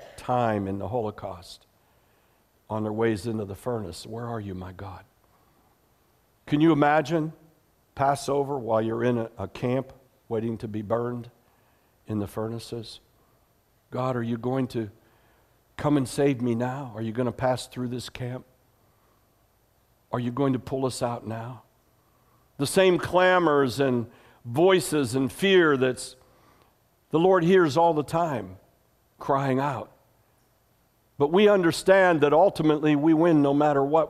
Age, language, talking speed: 60-79, English, 150 wpm